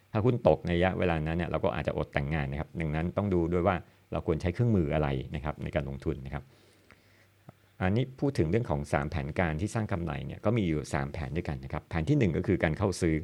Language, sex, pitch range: Thai, male, 80-100 Hz